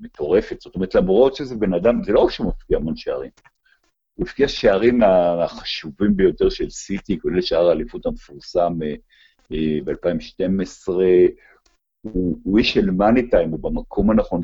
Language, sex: Hebrew, male